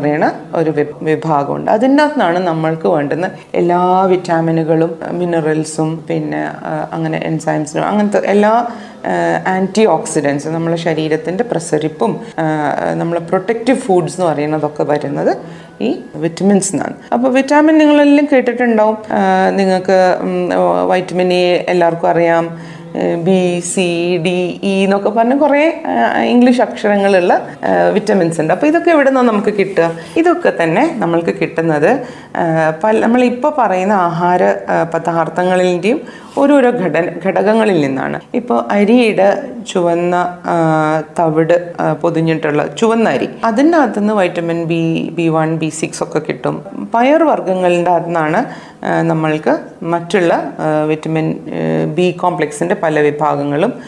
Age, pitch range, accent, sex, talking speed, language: 30-49, 160-215 Hz, native, female, 105 wpm, Malayalam